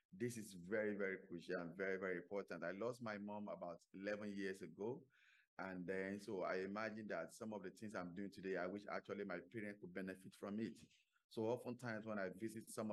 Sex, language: male, English